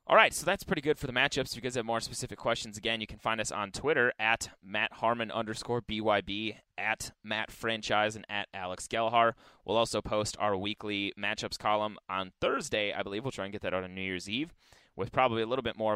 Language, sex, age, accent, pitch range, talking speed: English, male, 20-39, American, 100-120 Hz, 230 wpm